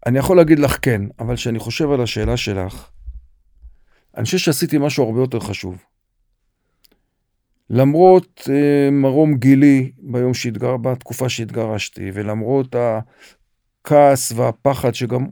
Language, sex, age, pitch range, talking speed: Hebrew, male, 50-69, 115-155 Hz, 105 wpm